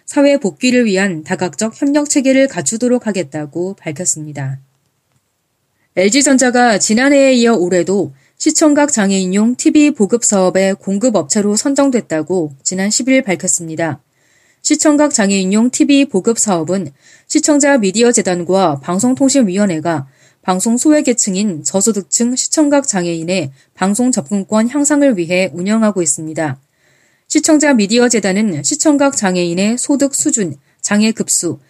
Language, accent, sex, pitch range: Korean, native, female, 175-250 Hz